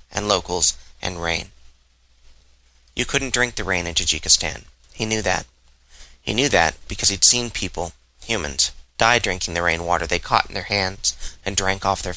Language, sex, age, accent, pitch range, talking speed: English, male, 30-49, American, 65-110 Hz, 175 wpm